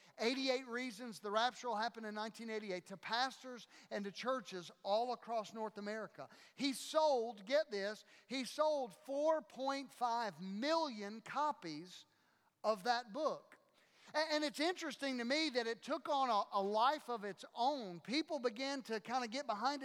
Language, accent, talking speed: English, American, 155 wpm